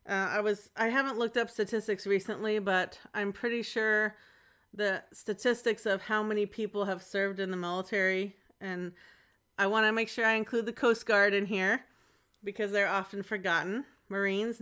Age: 30-49